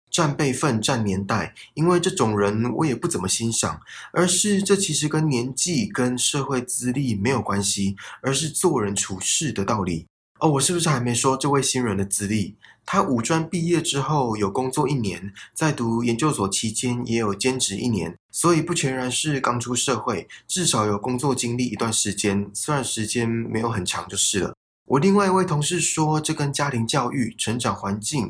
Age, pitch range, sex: 20-39, 105-150 Hz, male